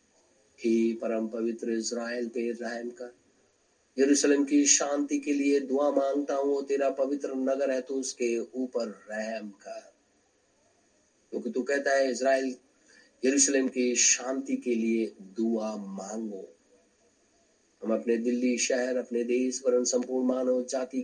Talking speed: 120 wpm